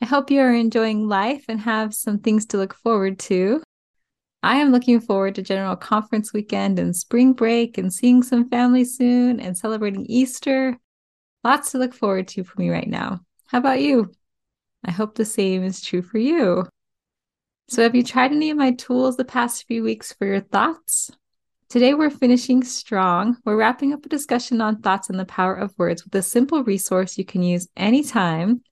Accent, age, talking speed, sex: American, 20-39, 190 wpm, female